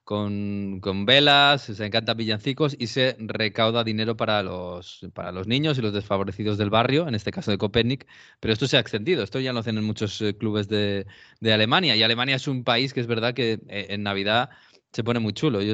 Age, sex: 20-39, male